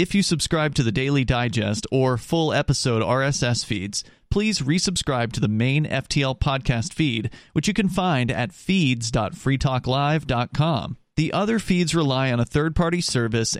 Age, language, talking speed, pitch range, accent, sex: 40-59, English, 150 wpm, 125-165 Hz, American, male